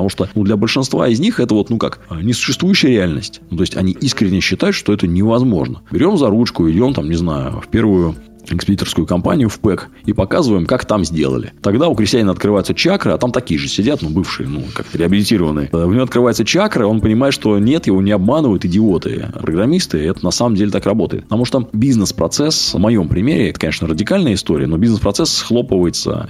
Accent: native